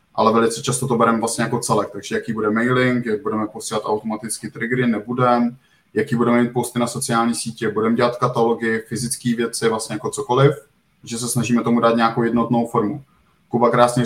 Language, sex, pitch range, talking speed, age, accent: Czech, male, 115-120 Hz, 185 wpm, 20-39, native